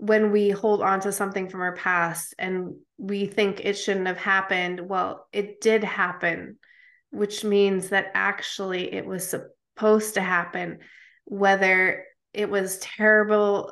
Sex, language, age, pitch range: female, English, 20-39, 190-220 Hz